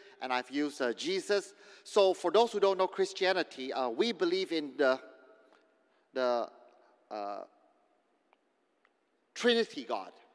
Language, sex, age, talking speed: English, male, 40-59, 120 wpm